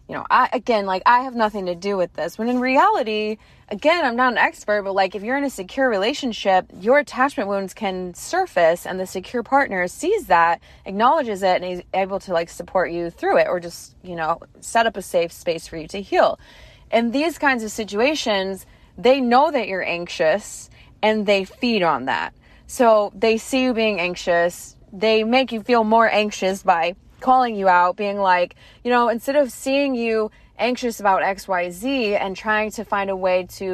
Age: 20-39